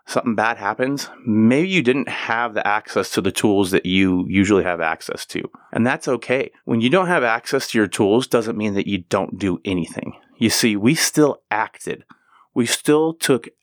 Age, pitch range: 30-49, 100-125 Hz